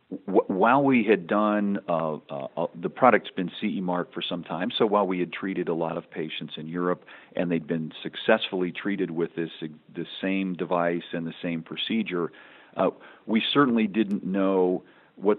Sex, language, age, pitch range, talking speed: male, English, 50-69, 85-105 Hz, 175 wpm